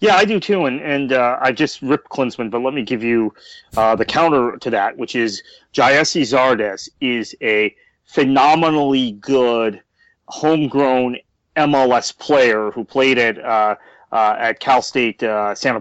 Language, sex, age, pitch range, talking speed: English, male, 30-49, 115-145 Hz, 160 wpm